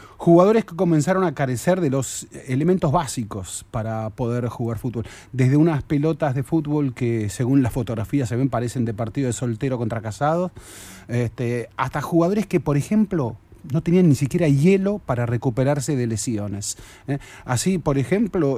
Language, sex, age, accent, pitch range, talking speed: Spanish, male, 30-49, Argentinian, 120-160 Hz, 160 wpm